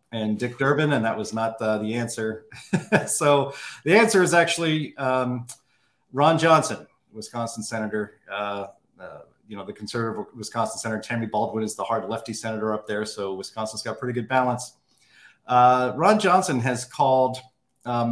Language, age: English, 40-59